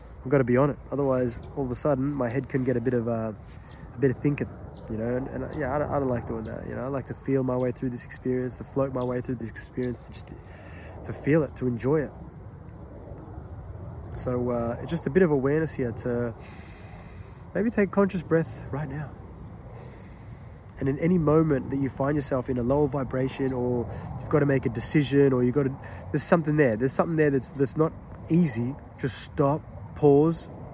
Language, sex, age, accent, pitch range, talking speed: English, male, 20-39, Australian, 115-150 Hz, 220 wpm